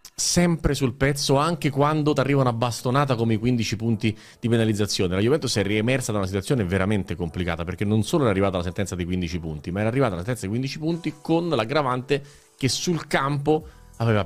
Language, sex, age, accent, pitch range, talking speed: Italian, male, 30-49, native, 100-130 Hz, 200 wpm